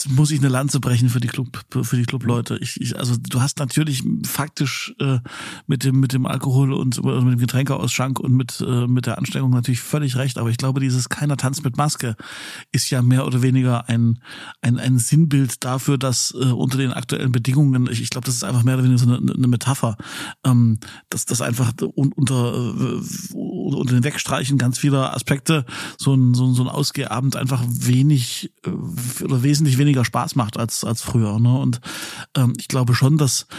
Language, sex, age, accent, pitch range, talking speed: German, male, 50-69, German, 125-135 Hz, 195 wpm